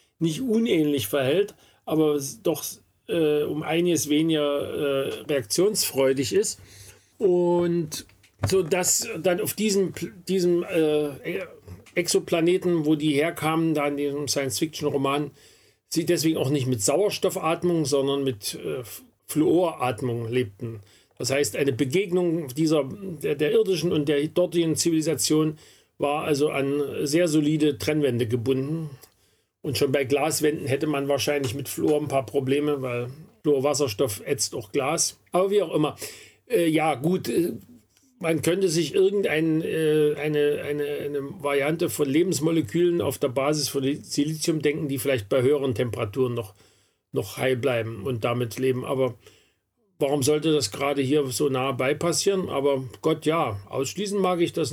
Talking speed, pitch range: 140 wpm, 140-165 Hz